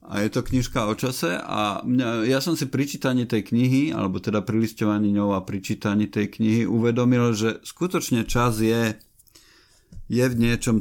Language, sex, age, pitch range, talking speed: Slovak, male, 50-69, 105-125 Hz, 165 wpm